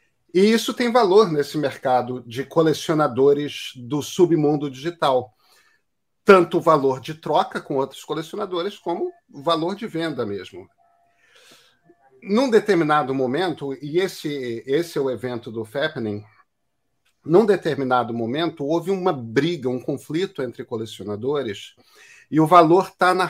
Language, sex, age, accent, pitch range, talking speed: Portuguese, male, 40-59, Brazilian, 135-185 Hz, 130 wpm